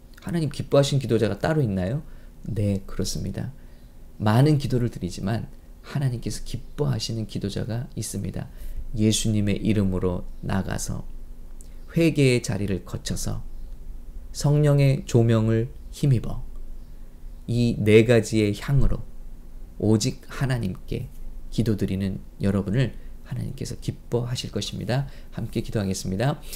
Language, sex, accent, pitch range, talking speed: English, male, Korean, 100-130 Hz, 80 wpm